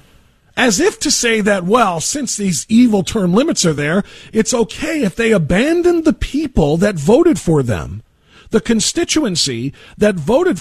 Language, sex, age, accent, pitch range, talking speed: English, male, 40-59, American, 200-280 Hz, 160 wpm